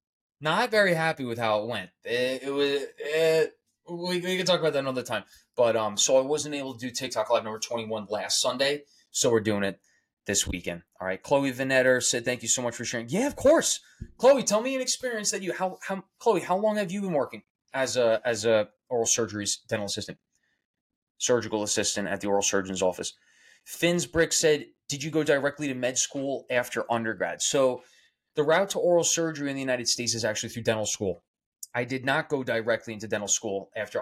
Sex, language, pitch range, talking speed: male, English, 110-150 Hz, 210 wpm